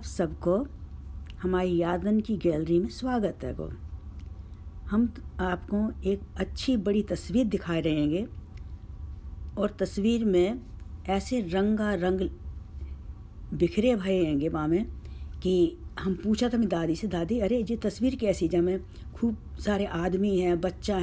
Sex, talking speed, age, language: female, 135 wpm, 60-79, Hindi